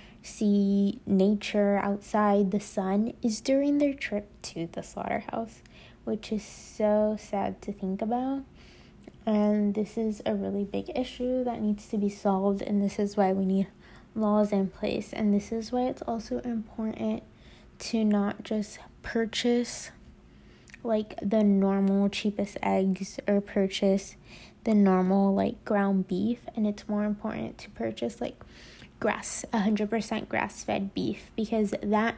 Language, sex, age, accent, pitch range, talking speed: English, female, 20-39, American, 195-225 Hz, 140 wpm